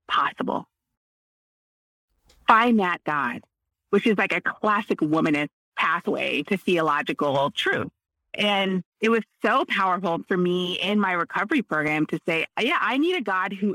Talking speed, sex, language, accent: 145 wpm, female, English, American